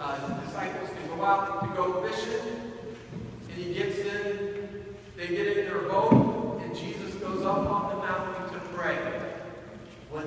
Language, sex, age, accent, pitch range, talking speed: English, male, 40-59, American, 170-220 Hz, 165 wpm